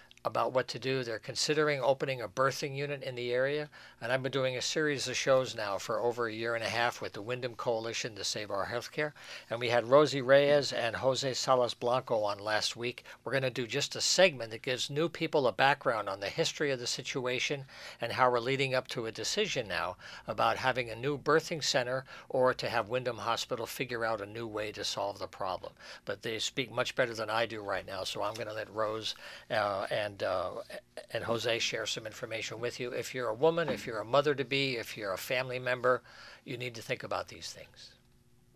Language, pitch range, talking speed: English, 120-150 Hz, 225 wpm